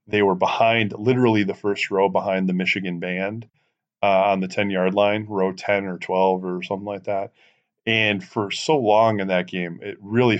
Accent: American